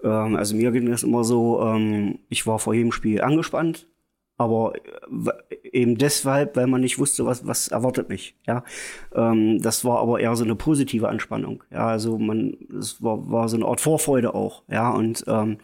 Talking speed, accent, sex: 155 wpm, German, male